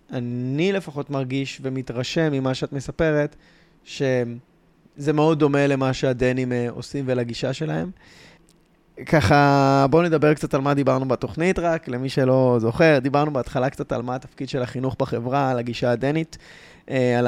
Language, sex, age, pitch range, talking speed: Hebrew, male, 20-39, 125-145 Hz, 140 wpm